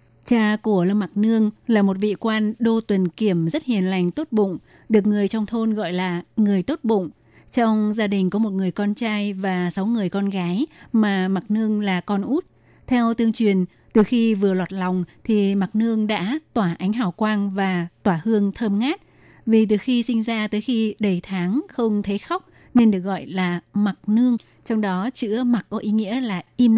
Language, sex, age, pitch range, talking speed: Vietnamese, female, 20-39, 190-225 Hz, 210 wpm